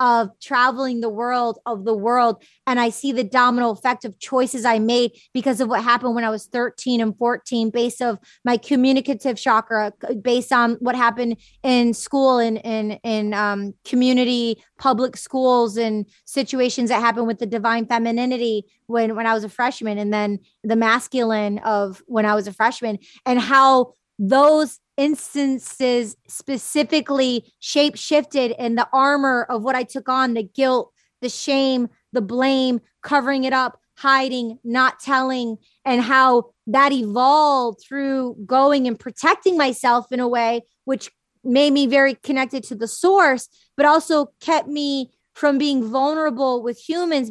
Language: English